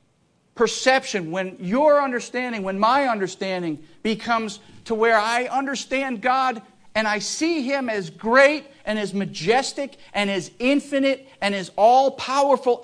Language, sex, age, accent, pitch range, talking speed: English, male, 50-69, American, 155-245 Hz, 130 wpm